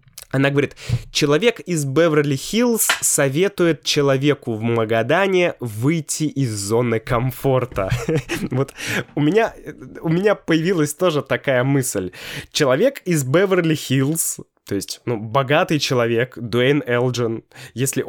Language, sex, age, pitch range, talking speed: Russian, male, 20-39, 120-150 Hz, 105 wpm